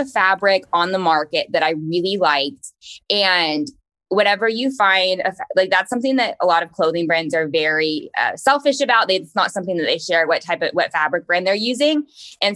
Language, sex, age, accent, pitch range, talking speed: English, female, 20-39, American, 160-200 Hz, 200 wpm